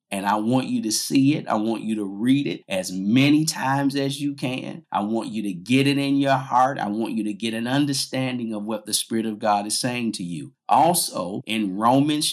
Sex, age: male, 50-69